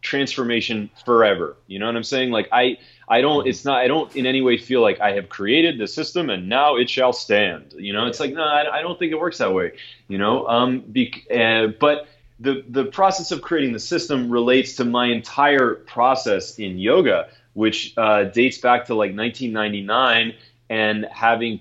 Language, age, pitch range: English, 30-49, 110-130 Hz